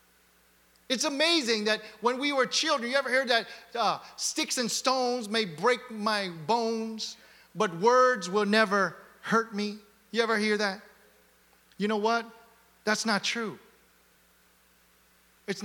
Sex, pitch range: male, 175-230 Hz